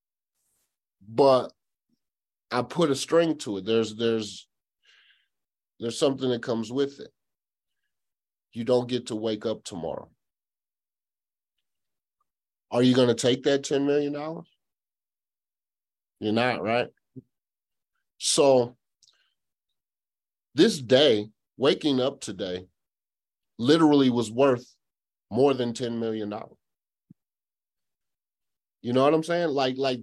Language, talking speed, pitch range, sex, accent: English, 110 wpm, 110-150 Hz, male, American